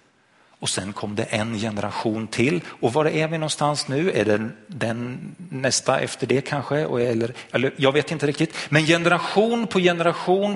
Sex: male